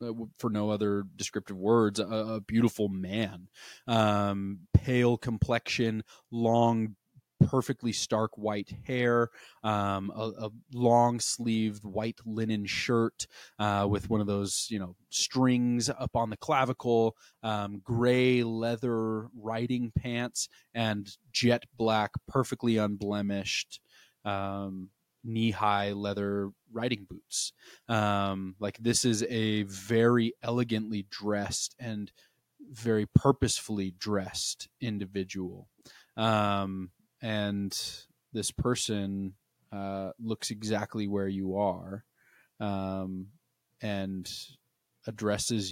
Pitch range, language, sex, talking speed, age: 100-120 Hz, English, male, 100 wpm, 20-39